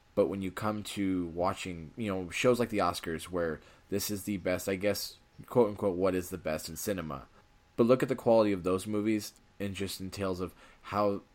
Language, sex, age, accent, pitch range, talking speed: English, male, 20-39, American, 85-100 Hz, 215 wpm